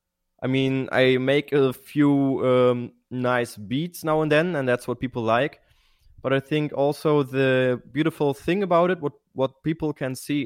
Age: 20-39